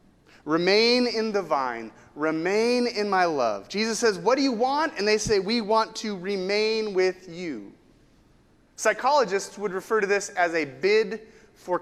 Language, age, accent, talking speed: English, 30-49, American, 160 wpm